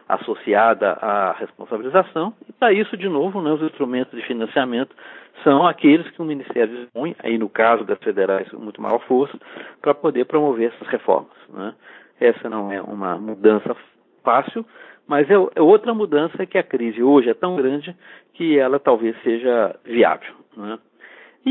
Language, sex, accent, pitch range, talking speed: Portuguese, male, Brazilian, 115-190 Hz, 160 wpm